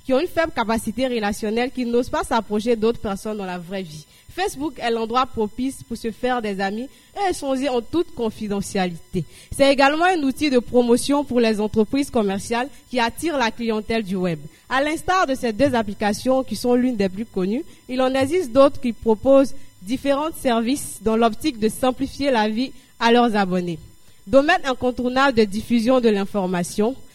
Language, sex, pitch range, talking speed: English, female, 220-270 Hz, 180 wpm